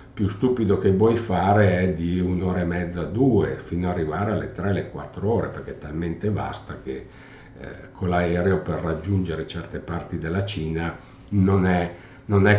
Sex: male